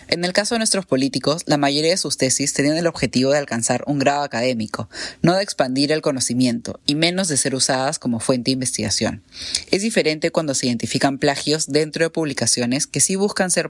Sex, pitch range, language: female, 125-160 Hz, Spanish